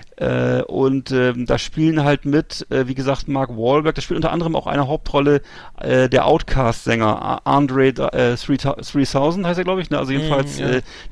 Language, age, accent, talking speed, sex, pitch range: German, 40-59, German, 185 wpm, male, 130-155 Hz